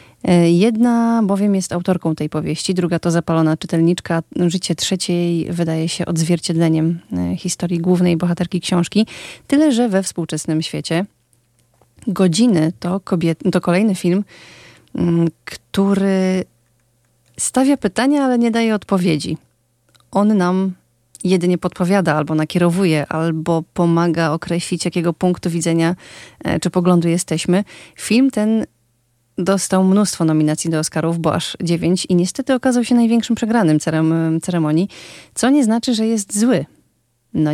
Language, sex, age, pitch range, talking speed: Polish, female, 30-49, 165-190 Hz, 120 wpm